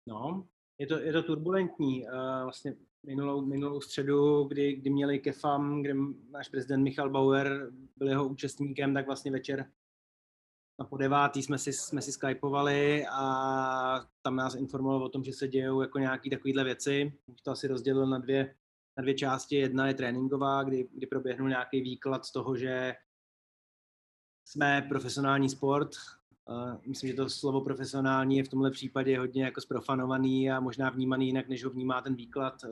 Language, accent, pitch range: Czech, native, 125-140 Hz